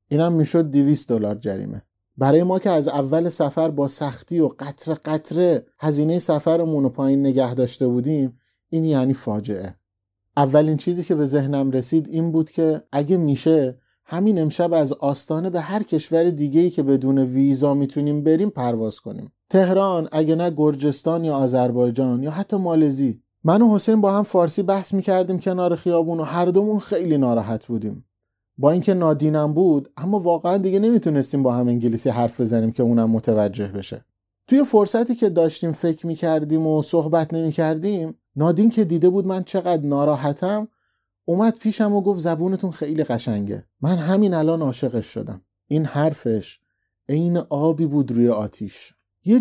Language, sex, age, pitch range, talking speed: Persian, male, 30-49, 130-175 Hz, 155 wpm